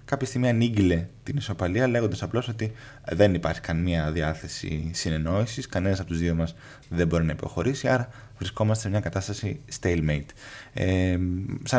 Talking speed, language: 150 wpm, Greek